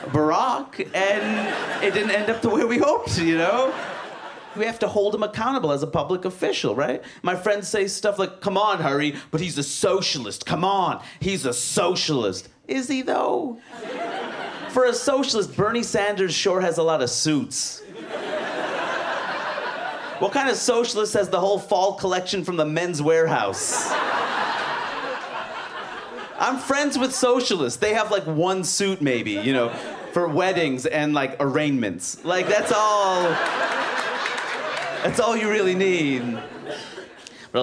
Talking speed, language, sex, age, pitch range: 150 wpm, English, male, 30-49, 150-220 Hz